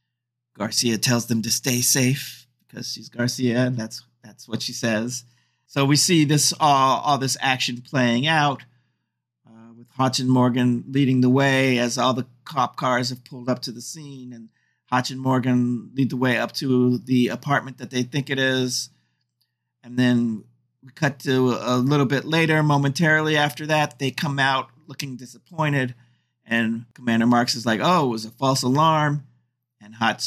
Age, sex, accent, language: 50-69, male, American, English